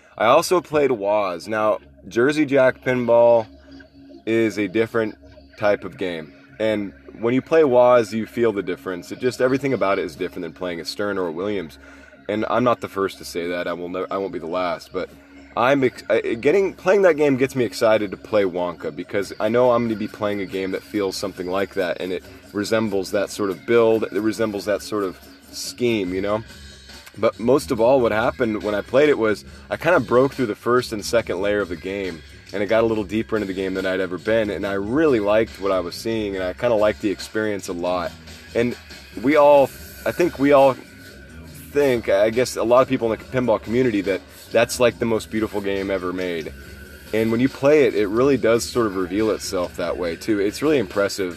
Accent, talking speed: American, 230 wpm